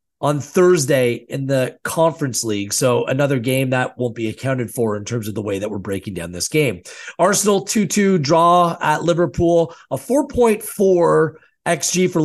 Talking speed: 165 wpm